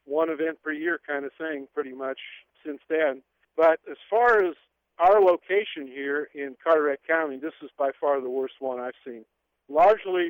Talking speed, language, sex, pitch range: 180 wpm, English, male, 135-165 Hz